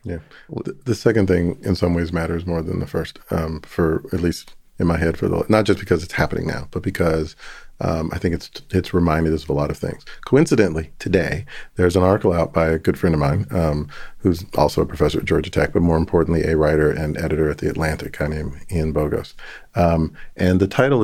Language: English